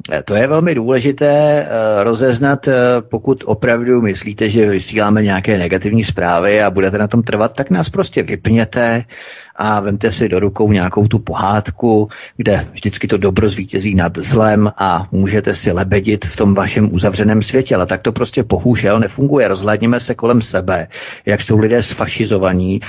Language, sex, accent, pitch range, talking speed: Czech, male, native, 100-120 Hz, 165 wpm